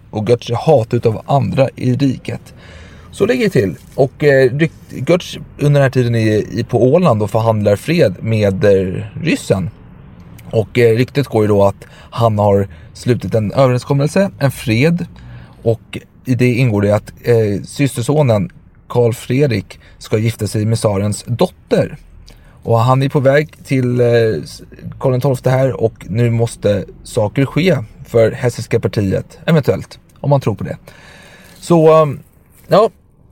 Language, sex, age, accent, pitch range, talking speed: Swedish, male, 30-49, native, 110-140 Hz, 140 wpm